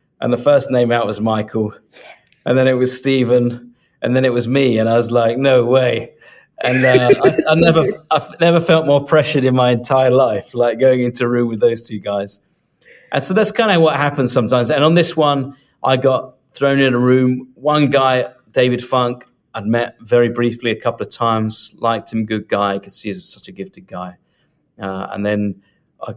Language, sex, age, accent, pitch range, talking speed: English, male, 40-59, British, 105-135 Hz, 210 wpm